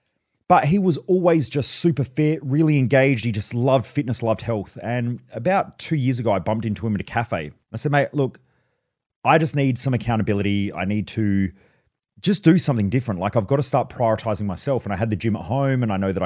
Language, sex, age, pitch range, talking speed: English, male, 30-49, 100-140 Hz, 225 wpm